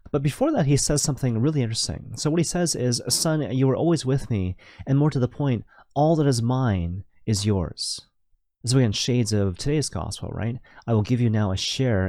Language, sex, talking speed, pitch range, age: English, male, 225 wpm, 100-130 Hz, 30-49